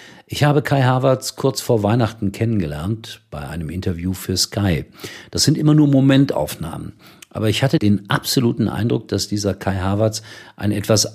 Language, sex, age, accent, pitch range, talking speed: German, male, 50-69, German, 90-115 Hz, 160 wpm